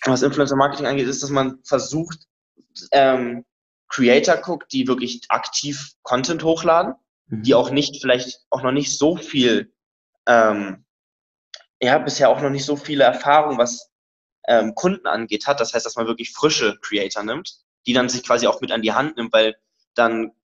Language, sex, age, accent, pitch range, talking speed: German, male, 20-39, German, 120-140 Hz, 170 wpm